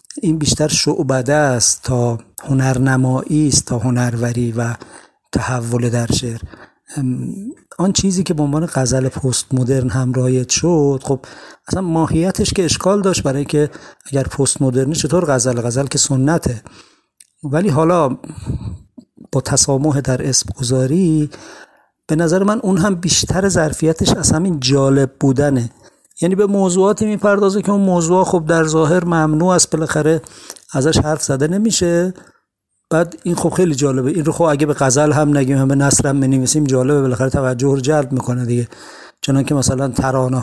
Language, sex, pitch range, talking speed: Persian, male, 130-165 Hz, 150 wpm